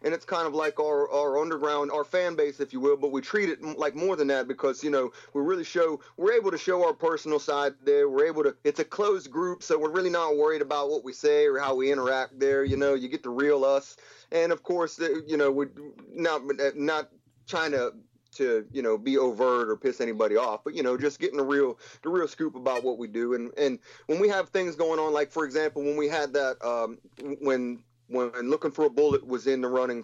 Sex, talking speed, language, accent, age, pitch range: male, 245 wpm, English, American, 30-49, 140-185 Hz